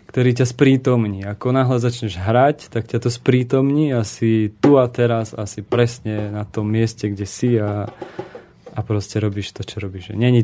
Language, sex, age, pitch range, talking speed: Slovak, male, 20-39, 105-120 Hz, 170 wpm